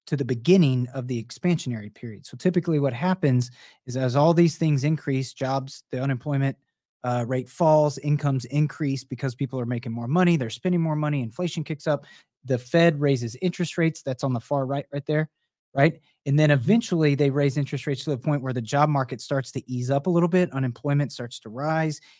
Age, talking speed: 30-49, 205 wpm